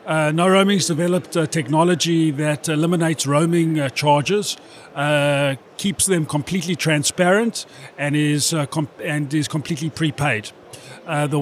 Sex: male